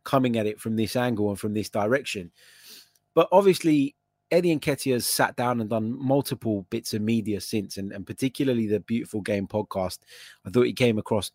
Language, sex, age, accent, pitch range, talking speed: English, male, 20-39, British, 100-125 Hz, 195 wpm